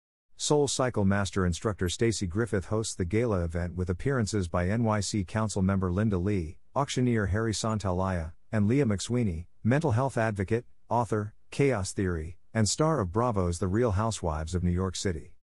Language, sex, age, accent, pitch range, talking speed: English, male, 50-69, American, 90-115 Hz, 160 wpm